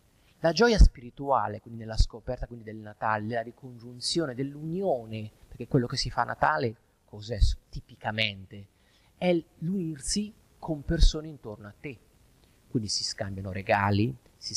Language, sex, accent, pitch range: Italian, male, native, 105-150 Hz